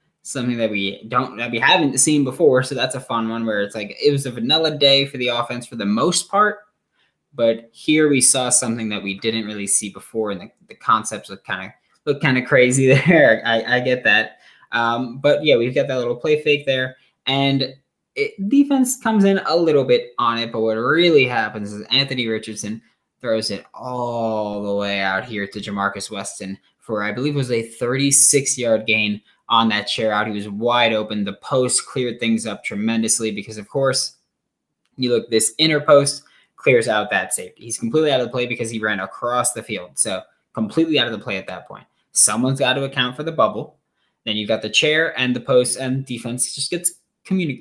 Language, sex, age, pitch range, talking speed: English, male, 20-39, 110-145 Hz, 215 wpm